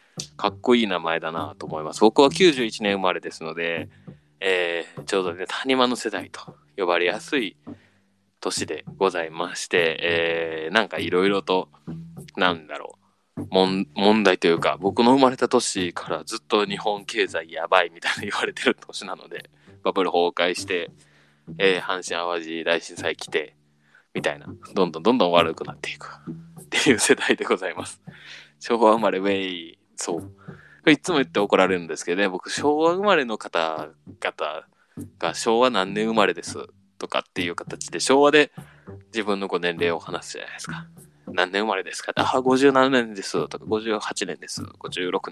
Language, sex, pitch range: Japanese, male, 90-130 Hz